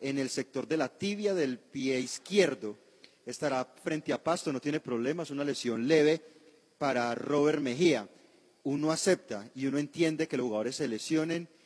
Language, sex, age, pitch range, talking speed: Spanish, male, 40-59, 130-160 Hz, 165 wpm